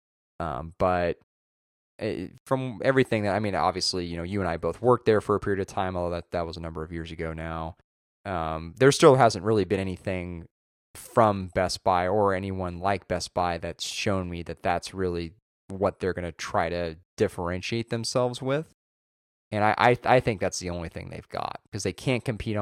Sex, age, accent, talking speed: male, 20-39, American, 200 wpm